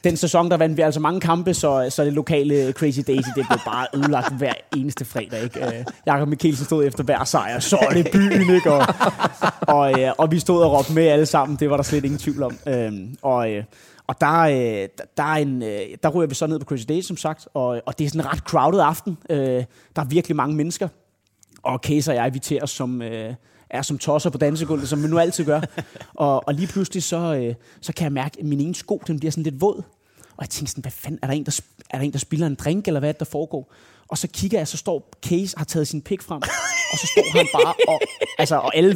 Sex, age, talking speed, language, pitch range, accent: male, 30-49, 245 wpm, Danish, 140-165 Hz, native